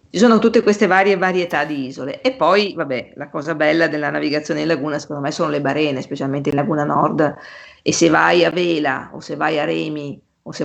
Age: 40-59